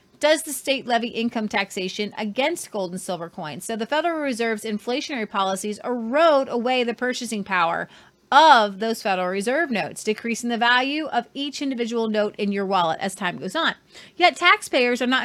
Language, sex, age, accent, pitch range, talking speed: English, female, 30-49, American, 225-330 Hz, 175 wpm